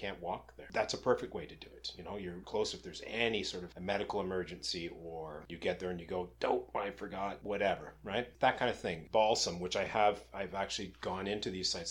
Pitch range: 90-105 Hz